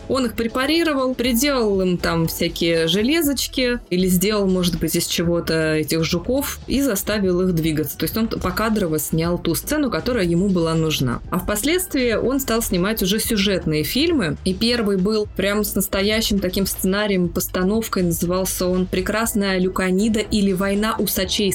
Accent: native